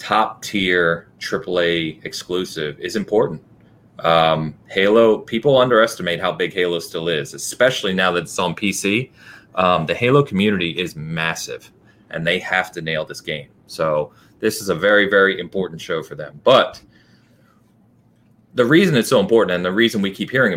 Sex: male